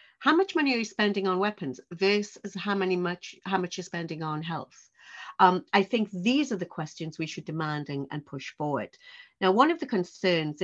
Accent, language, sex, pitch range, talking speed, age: British, English, female, 150-200 Hz, 190 wpm, 50-69